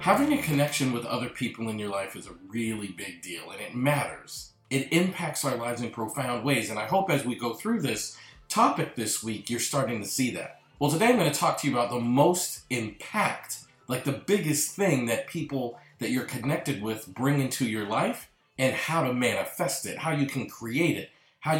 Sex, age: male, 40-59